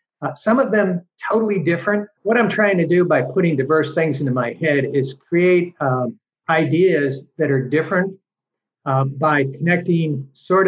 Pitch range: 135-170 Hz